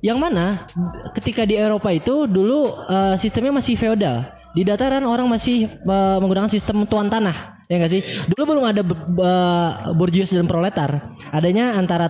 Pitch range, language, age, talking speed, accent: 175-230 Hz, Indonesian, 20-39, 160 wpm, native